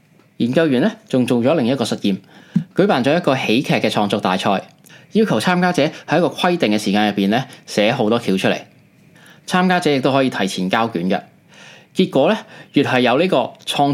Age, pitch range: 20-39, 115-170 Hz